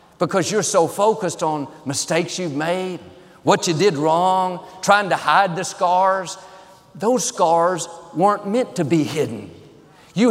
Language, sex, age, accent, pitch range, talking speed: English, male, 50-69, American, 165-220 Hz, 145 wpm